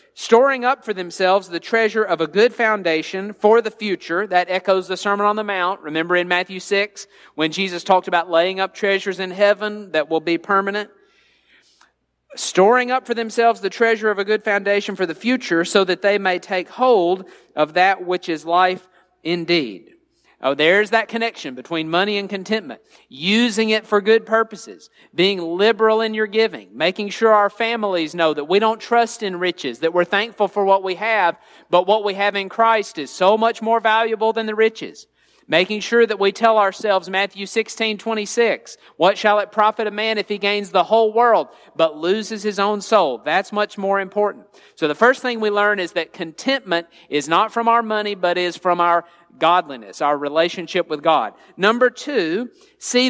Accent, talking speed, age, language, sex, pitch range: American, 190 wpm, 40-59, English, male, 180-220 Hz